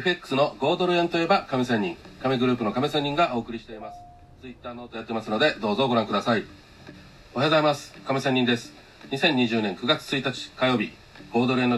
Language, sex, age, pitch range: Japanese, male, 40-59, 105-135 Hz